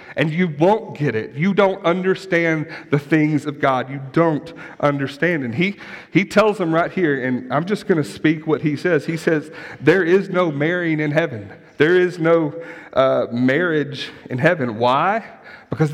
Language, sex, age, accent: English, male, 40-59, American